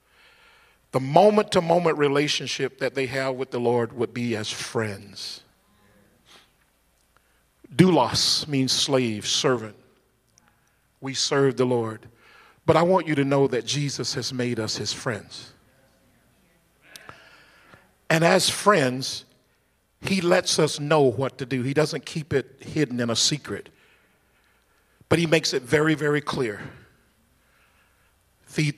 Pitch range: 125-175 Hz